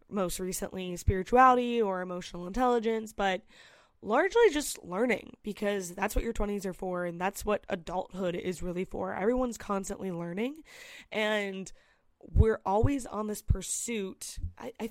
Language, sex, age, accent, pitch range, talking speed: English, female, 20-39, American, 180-210 Hz, 140 wpm